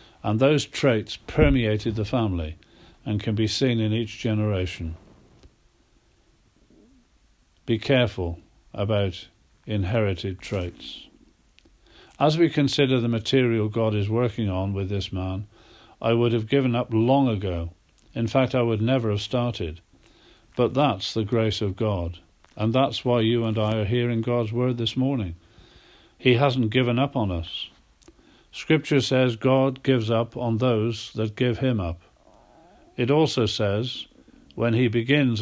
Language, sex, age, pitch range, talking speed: English, male, 50-69, 100-125 Hz, 145 wpm